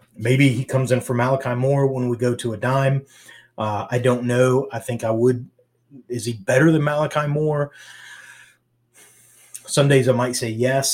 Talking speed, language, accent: 180 wpm, English, American